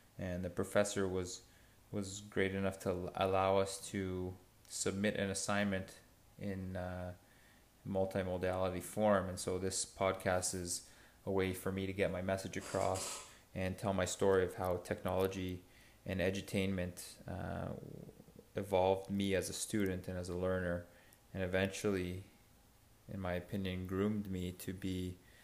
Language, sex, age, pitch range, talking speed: English, male, 20-39, 90-105 Hz, 140 wpm